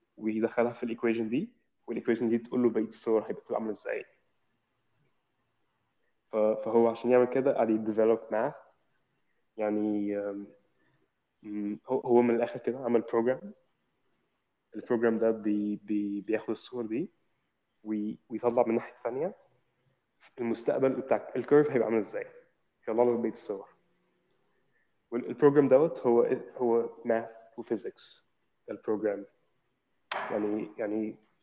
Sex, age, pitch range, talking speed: male, 20-39, 110-125 Hz, 115 wpm